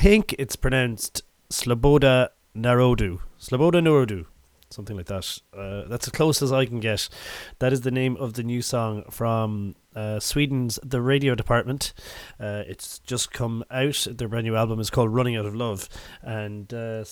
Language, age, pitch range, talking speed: English, 30-49, 105-135 Hz, 175 wpm